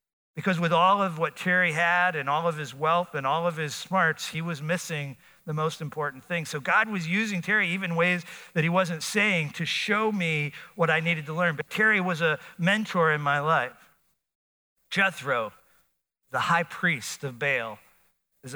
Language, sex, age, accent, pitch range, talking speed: English, male, 50-69, American, 145-180 Hz, 190 wpm